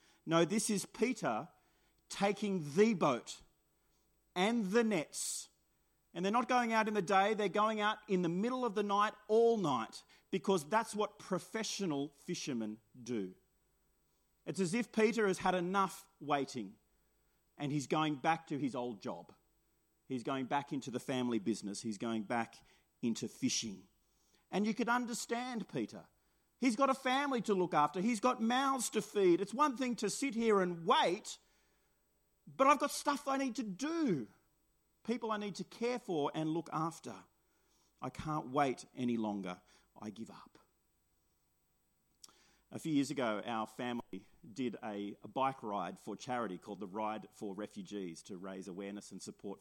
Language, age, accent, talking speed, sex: English, 40-59, Australian, 165 wpm, male